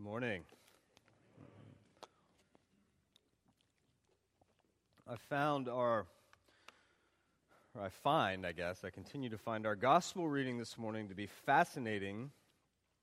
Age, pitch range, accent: 30-49, 115-165 Hz, American